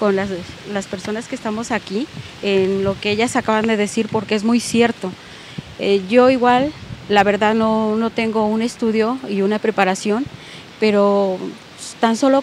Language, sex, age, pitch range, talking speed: Spanish, female, 30-49, 205-240 Hz, 165 wpm